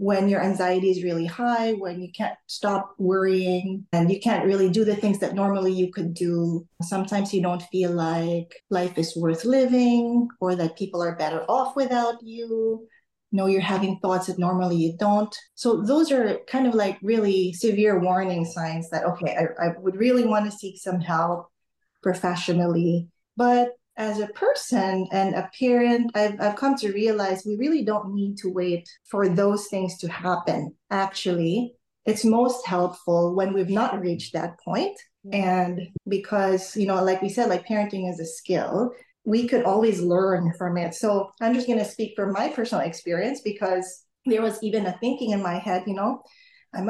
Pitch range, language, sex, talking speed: 180-225 Hz, English, female, 185 wpm